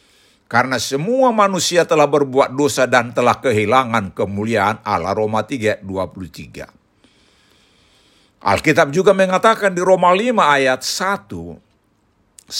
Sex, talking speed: male, 100 wpm